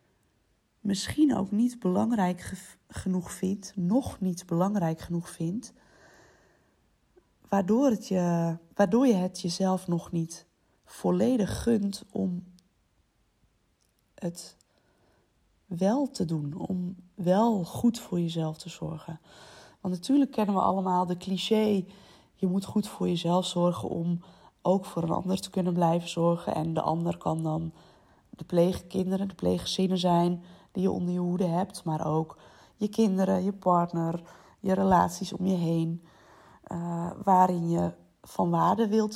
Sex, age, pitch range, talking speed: female, 20-39, 170-205 Hz, 135 wpm